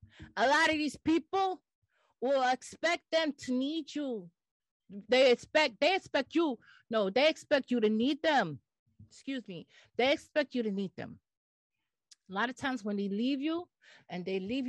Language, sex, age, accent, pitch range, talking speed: English, female, 40-59, American, 195-280 Hz, 170 wpm